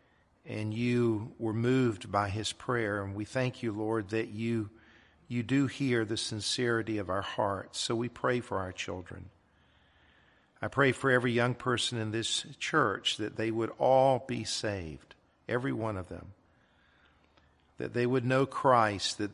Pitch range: 105-125 Hz